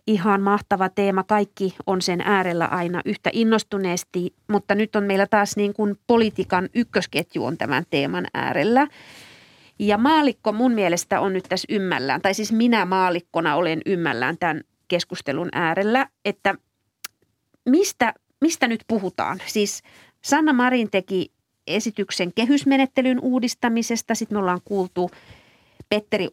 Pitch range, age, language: 180-220 Hz, 30-49, Finnish